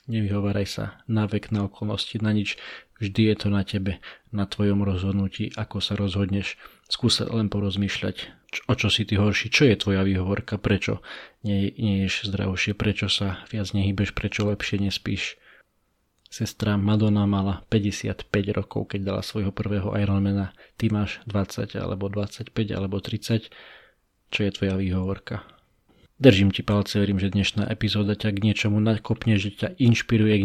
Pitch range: 100-110 Hz